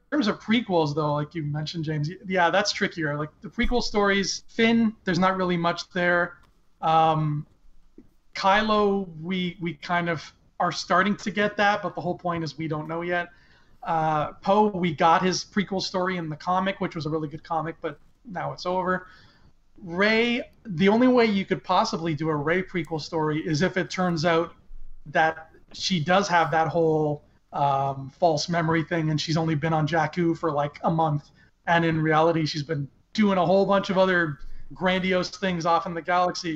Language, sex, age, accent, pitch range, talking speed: English, male, 30-49, American, 160-190 Hz, 190 wpm